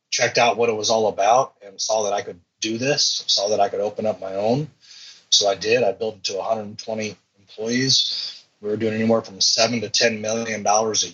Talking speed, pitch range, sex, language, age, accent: 220 wpm, 105-125 Hz, male, English, 30-49, American